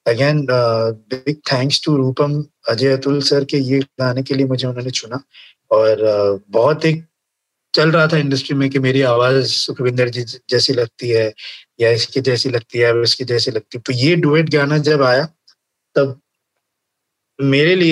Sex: male